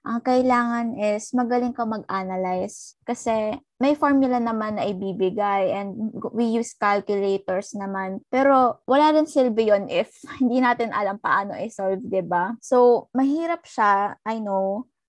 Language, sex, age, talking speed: Filipino, female, 20-39, 135 wpm